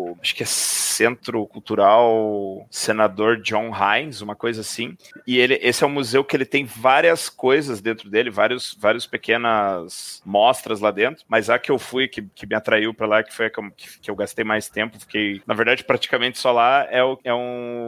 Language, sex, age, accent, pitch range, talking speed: Portuguese, male, 30-49, Brazilian, 110-125 Hz, 210 wpm